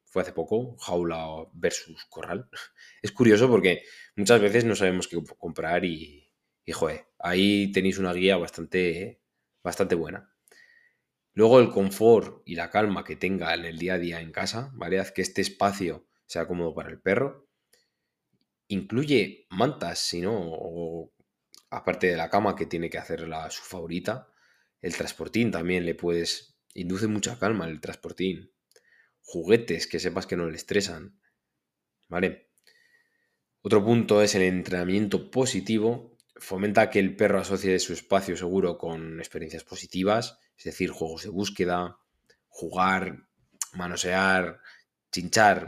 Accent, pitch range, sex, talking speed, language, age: Spanish, 85-105 Hz, male, 140 wpm, Spanish, 20-39